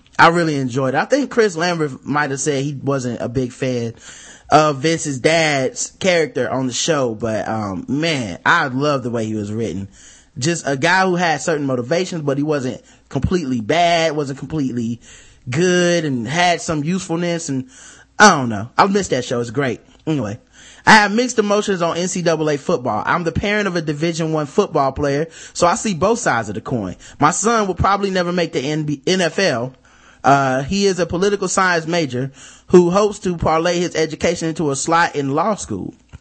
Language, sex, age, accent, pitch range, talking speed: English, male, 20-39, American, 135-180 Hz, 190 wpm